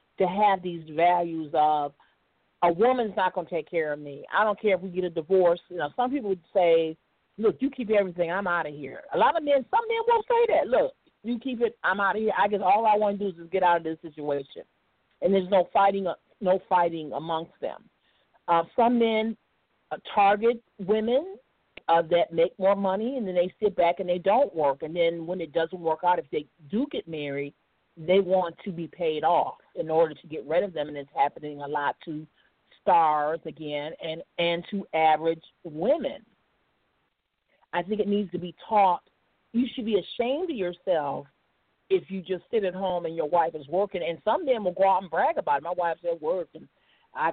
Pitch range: 165-220 Hz